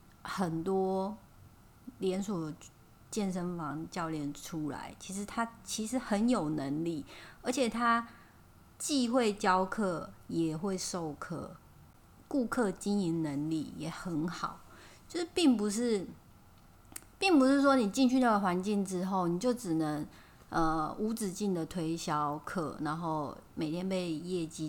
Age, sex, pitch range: 30-49, female, 160-220 Hz